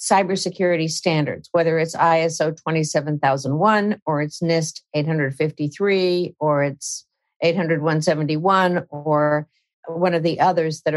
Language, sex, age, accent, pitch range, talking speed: English, female, 50-69, American, 150-180 Hz, 100 wpm